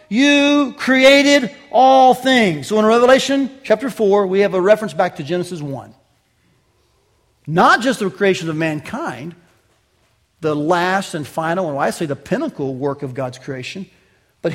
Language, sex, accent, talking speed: English, male, American, 155 wpm